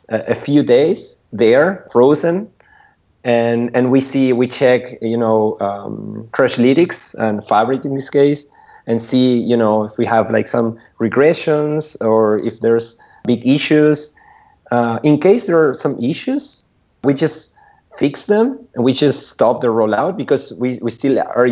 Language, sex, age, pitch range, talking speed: English, male, 40-59, 115-140 Hz, 160 wpm